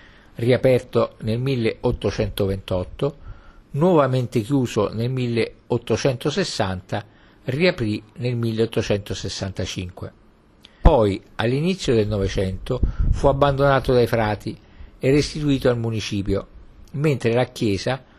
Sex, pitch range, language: male, 105-135 Hz, Italian